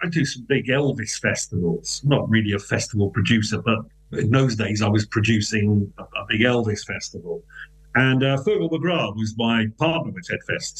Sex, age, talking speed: male, 50-69, 180 wpm